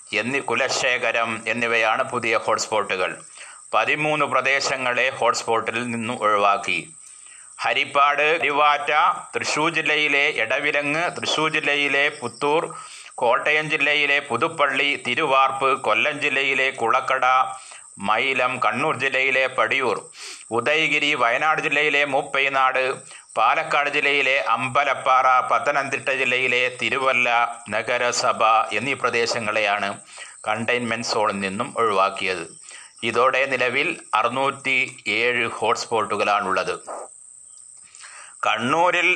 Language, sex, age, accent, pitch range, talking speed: Malayalam, male, 30-49, native, 115-150 Hz, 80 wpm